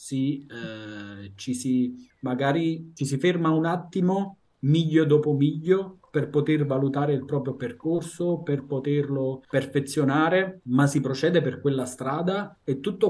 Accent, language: native, Italian